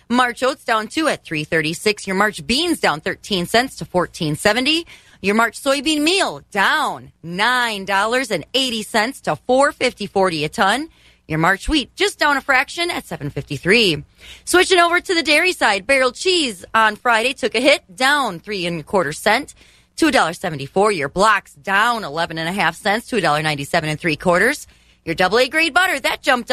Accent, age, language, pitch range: American, 30-49, English, 185-270 Hz